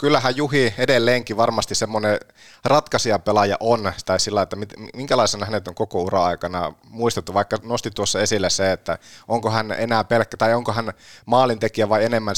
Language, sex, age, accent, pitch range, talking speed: Finnish, male, 30-49, native, 95-115 Hz, 155 wpm